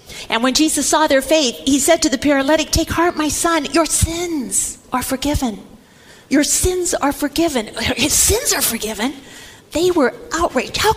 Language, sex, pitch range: English, female, 275-350 Hz